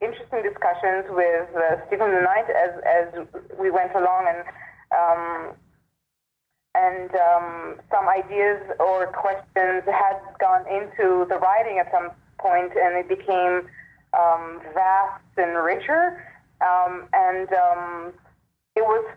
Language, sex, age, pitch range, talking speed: English, female, 30-49, 175-215 Hz, 120 wpm